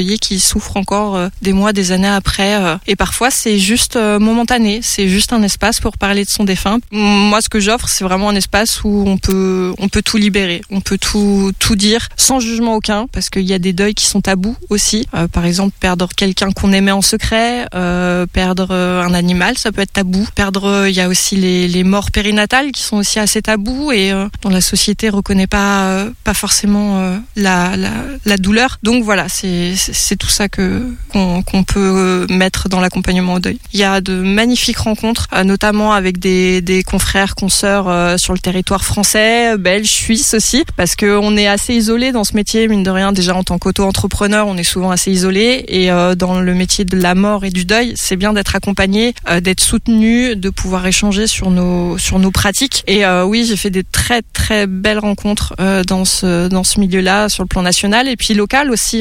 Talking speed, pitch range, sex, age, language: 210 wpm, 185-215 Hz, female, 20-39, French